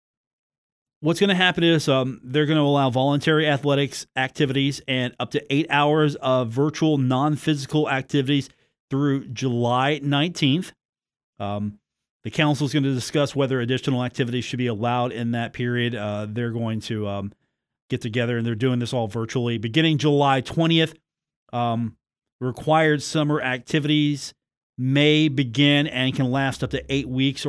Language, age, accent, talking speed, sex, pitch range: English, 40-59, American, 155 wpm, male, 125-145 Hz